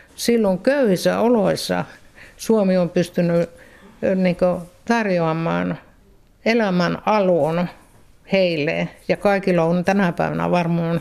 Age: 60-79